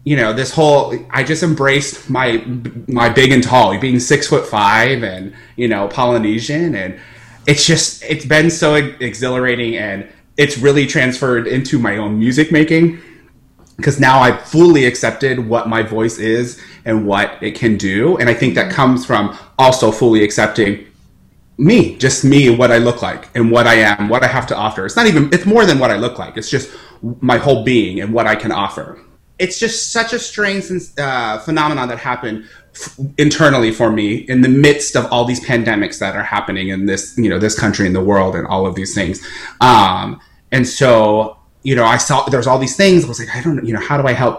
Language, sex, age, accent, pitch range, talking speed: English, male, 30-49, American, 110-140 Hz, 210 wpm